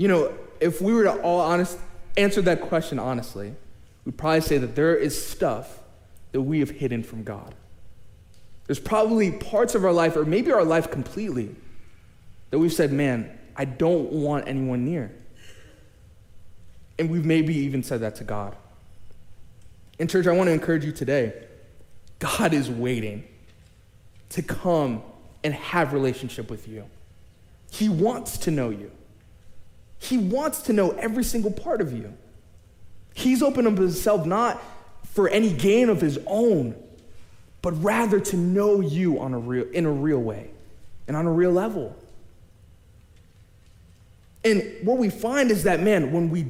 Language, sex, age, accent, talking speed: English, male, 20-39, American, 155 wpm